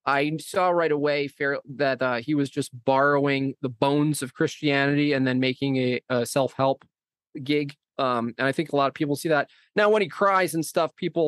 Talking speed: 205 wpm